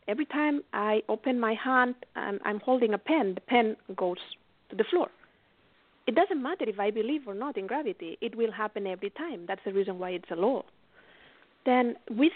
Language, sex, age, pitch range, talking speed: English, female, 40-59, 205-280 Hz, 200 wpm